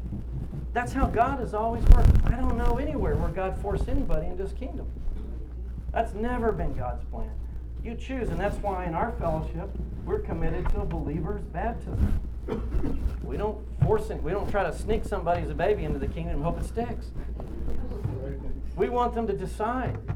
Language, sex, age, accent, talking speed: English, male, 50-69, American, 180 wpm